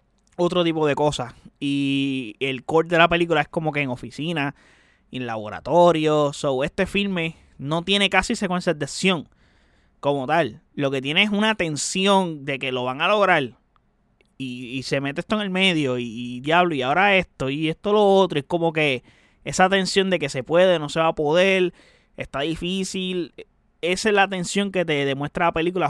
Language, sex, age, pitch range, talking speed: Spanish, male, 20-39, 140-180 Hz, 190 wpm